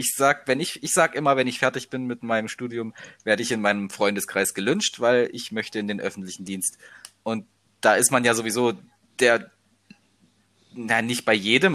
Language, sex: German, male